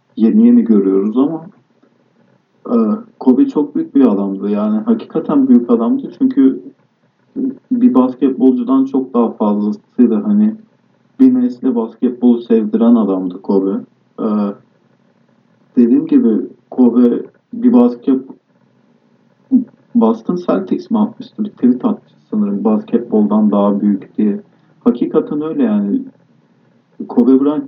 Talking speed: 100 wpm